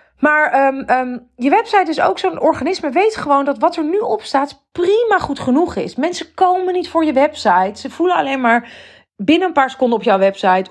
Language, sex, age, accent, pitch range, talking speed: Dutch, female, 30-49, Dutch, 205-280 Hz, 215 wpm